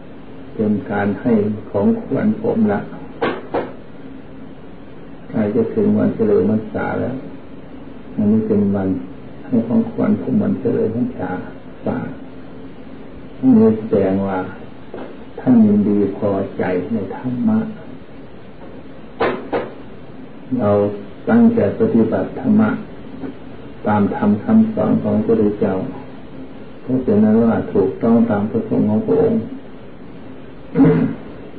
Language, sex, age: Thai, male, 60-79